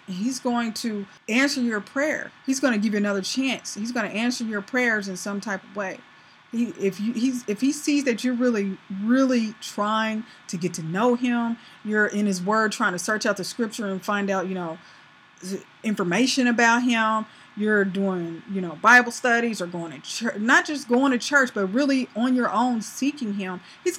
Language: English